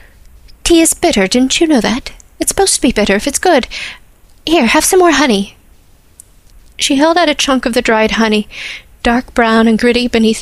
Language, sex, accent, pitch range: English, female, American, 215-250 Hz